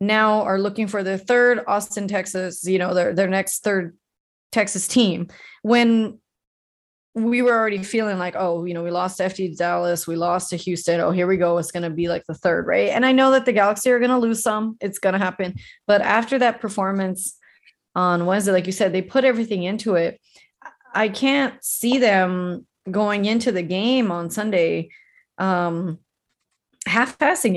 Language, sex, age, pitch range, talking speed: English, female, 30-49, 185-230 Hz, 190 wpm